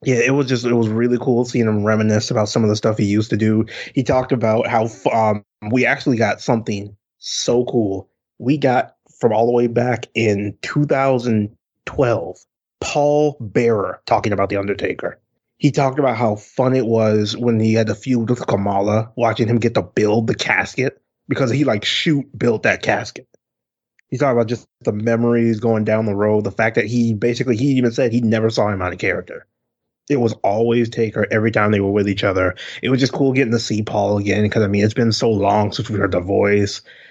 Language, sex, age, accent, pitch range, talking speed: English, male, 20-39, American, 105-125 Hz, 215 wpm